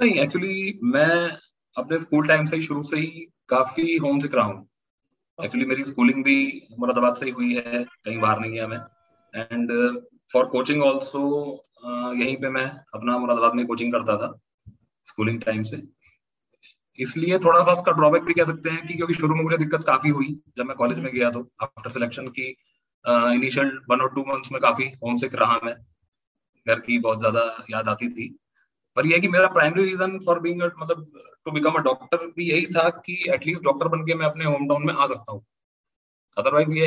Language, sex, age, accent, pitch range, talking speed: Hindi, male, 20-39, native, 125-165 Hz, 165 wpm